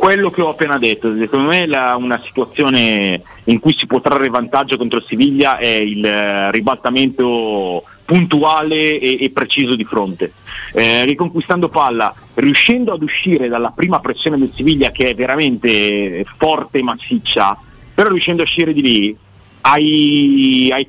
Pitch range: 120-170 Hz